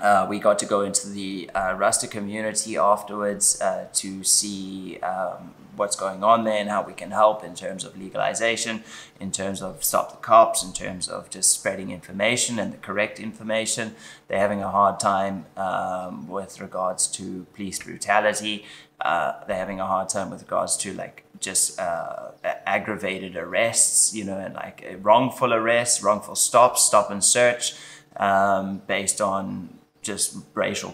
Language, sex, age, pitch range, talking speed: English, male, 20-39, 95-110 Hz, 165 wpm